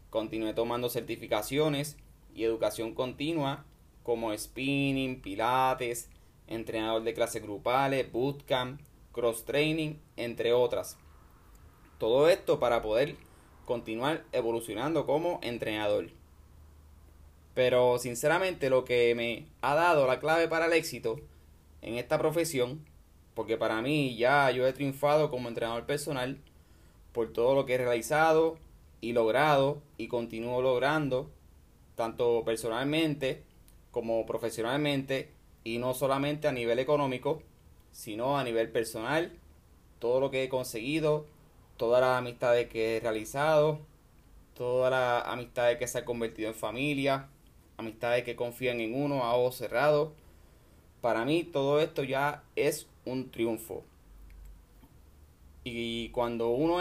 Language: Spanish